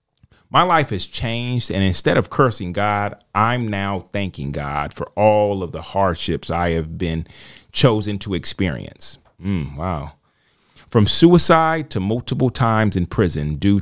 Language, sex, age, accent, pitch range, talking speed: English, male, 30-49, American, 90-115 Hz, 150 wpm